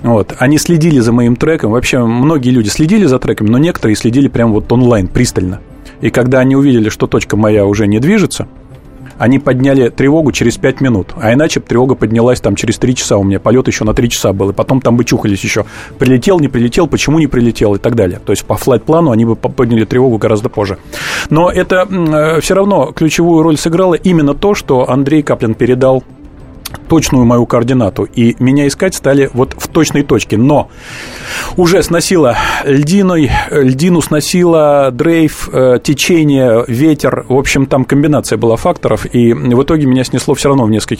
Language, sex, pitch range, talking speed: Russian, male, 120-155 Hz, 185 wpm